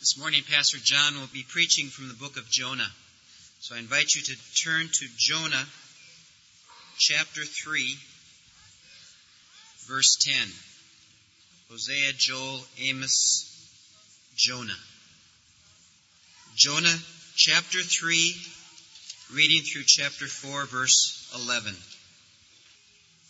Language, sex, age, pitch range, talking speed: English, male, 40-59, 130-180 Hz, 95 wpm